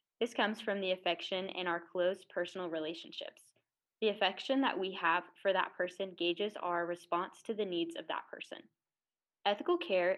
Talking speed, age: 170 wpm, 10-29